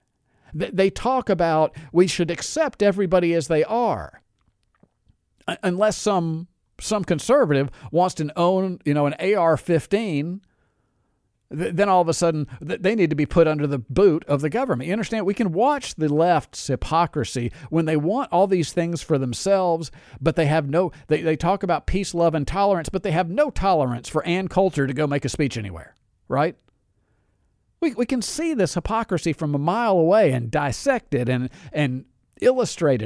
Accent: American